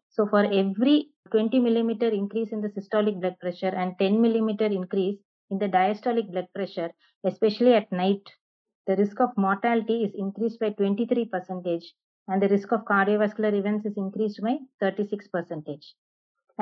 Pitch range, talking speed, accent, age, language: 195-230 Hz, 150 wpm, Indian, 20-39, English